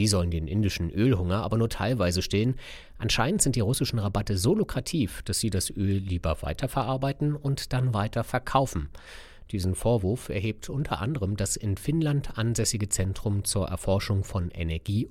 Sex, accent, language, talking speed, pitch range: male, German, German, 155 wpm, 90-115 Hz